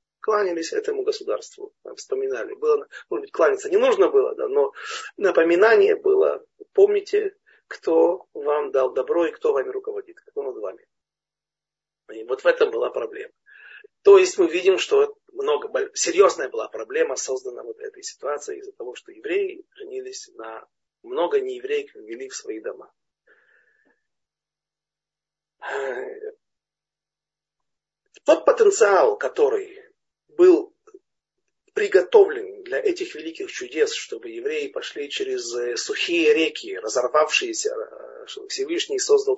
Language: Russian